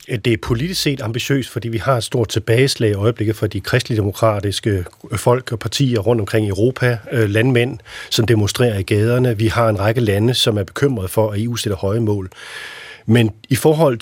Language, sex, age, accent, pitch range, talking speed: Danish, male, 40-59, native, 110-135 Hz, 195 wpm